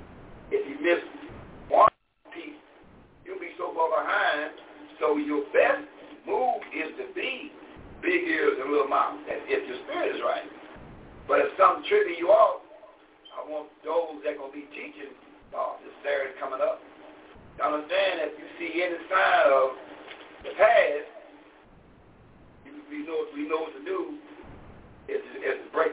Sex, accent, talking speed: male, American, 155 wpm